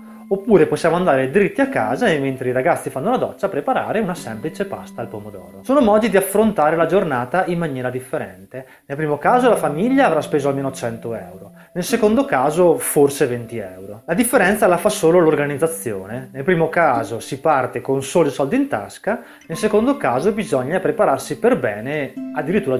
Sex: male